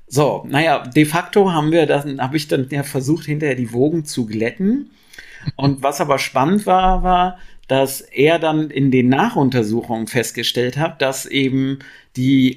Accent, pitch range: German, 125-155 Hz